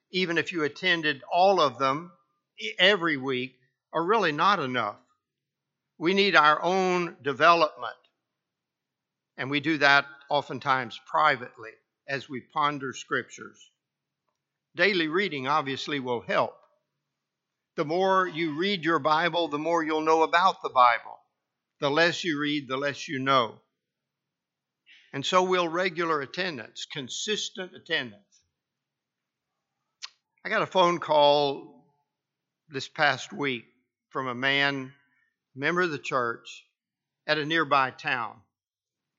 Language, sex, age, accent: English, male, 60-79, American